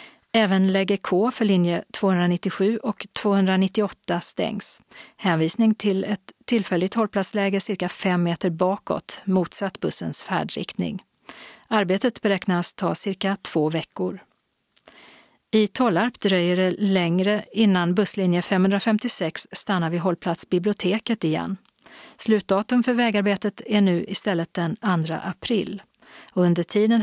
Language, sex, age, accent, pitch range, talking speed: Swedish, female, 40-59, native, 180-210 Hz, 110 wpm